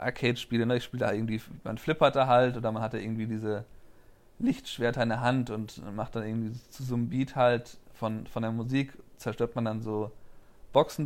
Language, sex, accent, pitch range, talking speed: German, male, German, 120-135 Hz, 200 wpm